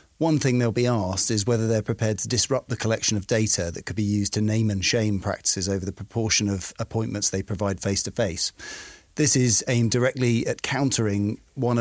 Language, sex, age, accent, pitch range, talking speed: English, male, 40-59, British, 100-125 Hz, 210 wpm